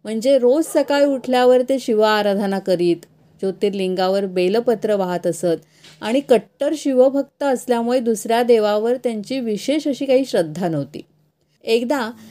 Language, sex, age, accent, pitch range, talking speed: Marathi, female, 30-49, native, 195-260 Hz, 120 wpm